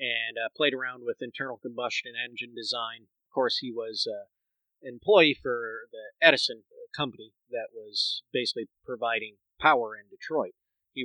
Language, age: English, 30-49